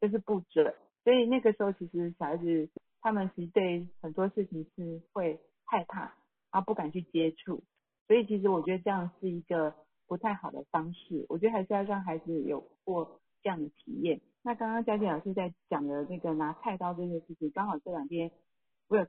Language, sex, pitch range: Chinese, female, 165-215 Hz